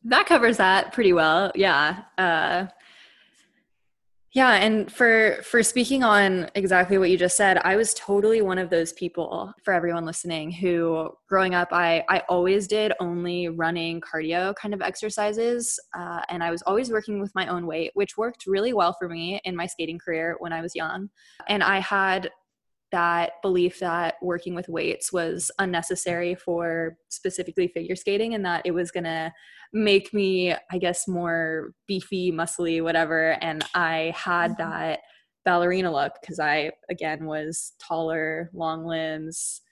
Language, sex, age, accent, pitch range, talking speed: English, female, 20-39, American, 170-200 Hz, 160 wpm